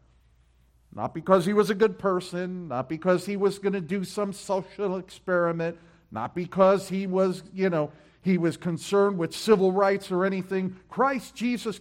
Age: 50-69